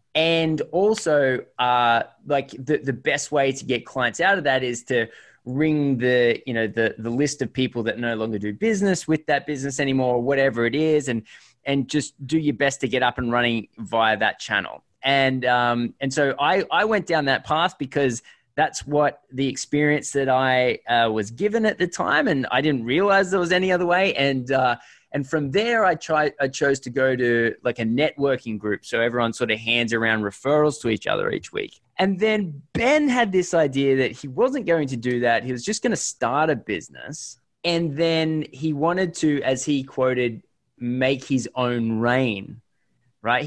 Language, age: English, 20-39